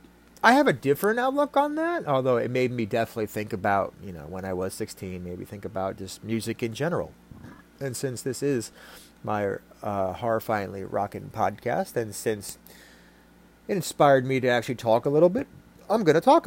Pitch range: 95-130 Hz